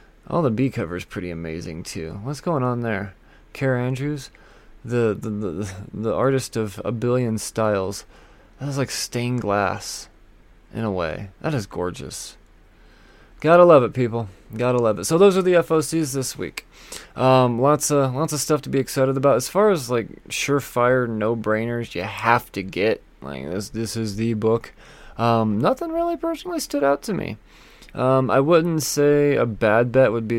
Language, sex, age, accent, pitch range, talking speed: English, male, 20-39, American, 105-130 Hz, 180 wpm